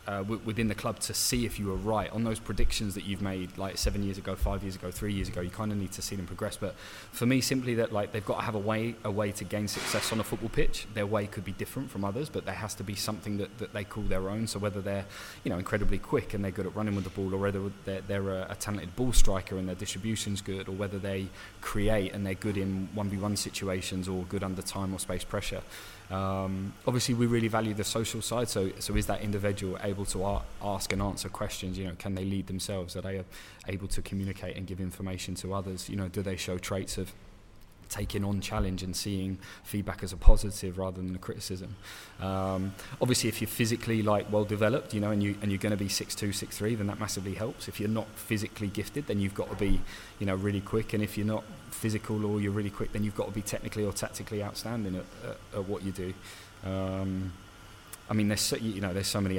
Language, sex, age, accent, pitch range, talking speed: English, male, 20-39, British, 95-105 Hz, 250 wpm